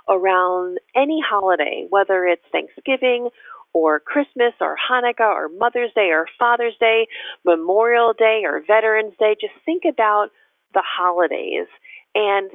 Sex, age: female, 40-59